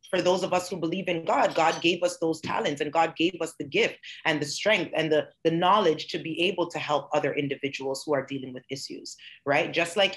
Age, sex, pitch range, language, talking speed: 30-49, female, 155-195 Hz, English, 240 wpm